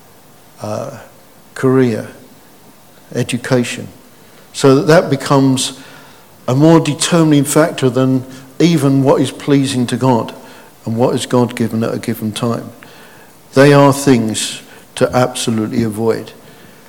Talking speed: 115 wpm